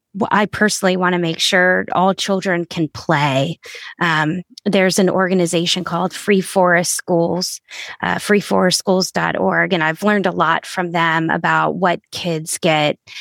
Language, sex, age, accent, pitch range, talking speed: English, female, 20-39, American, 170-195 Hz, 140 wpm